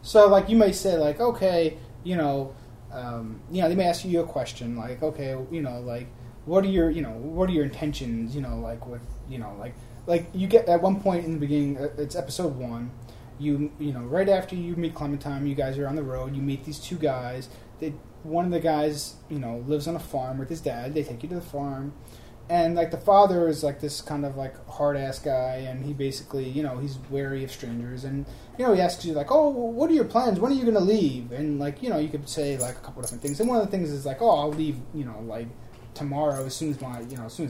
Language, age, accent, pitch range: English, 20-39, American, 120-165 Hz